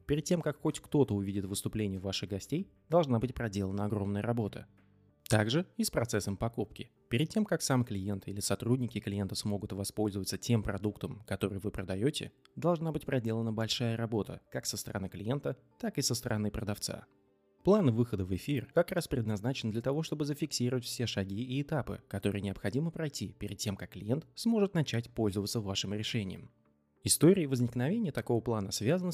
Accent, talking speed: native, 165 wpm